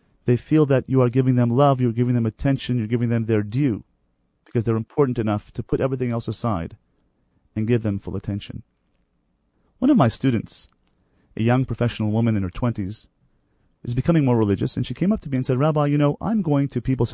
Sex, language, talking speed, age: male, English, 215 wpm, 30-49